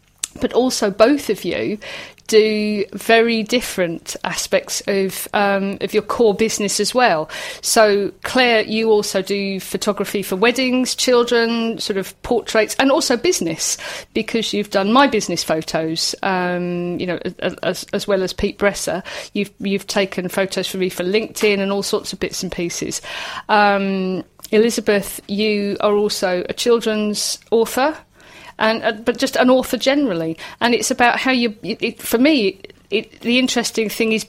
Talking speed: 160 wpm